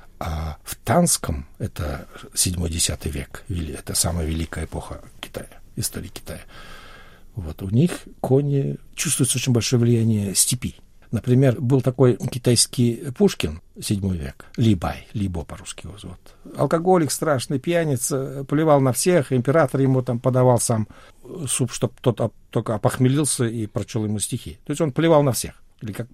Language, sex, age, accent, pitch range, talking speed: Russian, male, 60-79, native, 95-135 Hz, 140 wpm